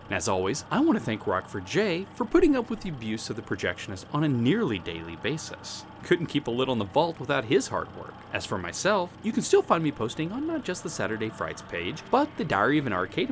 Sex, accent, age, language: male, American, 30-49, English